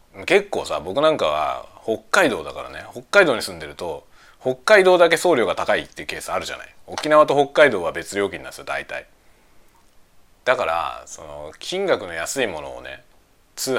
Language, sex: Japanese, male